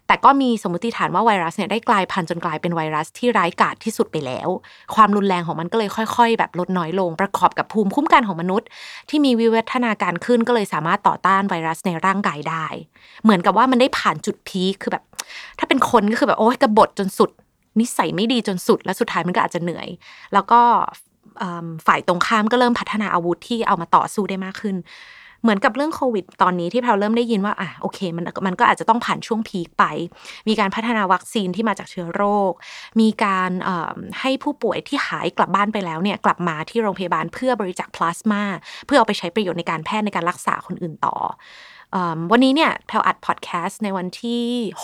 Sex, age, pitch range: female, 20-39, 175-225 Hz